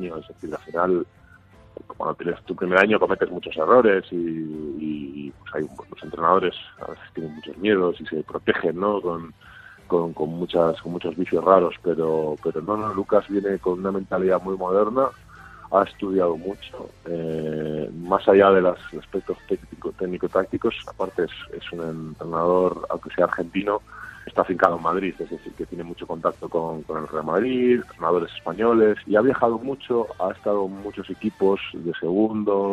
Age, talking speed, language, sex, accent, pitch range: 30-49, 180 wpm, Spanish, male, Spanish, 85-105 Hz